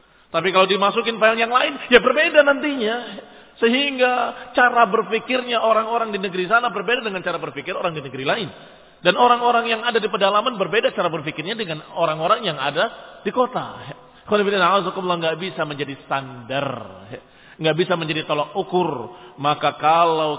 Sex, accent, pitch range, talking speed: male, native, 155-220 Hz, 155 wpm